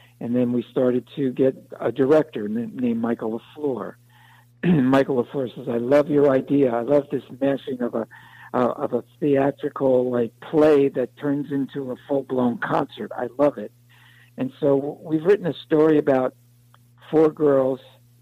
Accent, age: American, 60-79